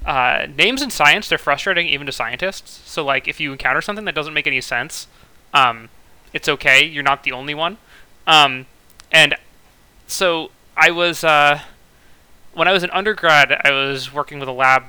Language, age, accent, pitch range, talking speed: English, 20-39, American, 130-160 Hz, 175 wpm